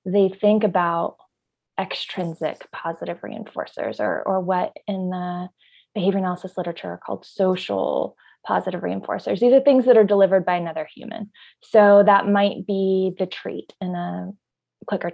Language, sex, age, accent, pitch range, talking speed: English, female, 20-39, American, 185-220 Hz, 145 wpm